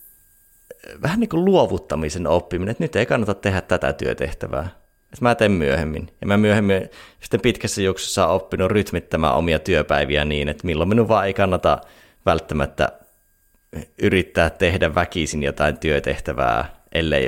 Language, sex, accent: Finnish, male, native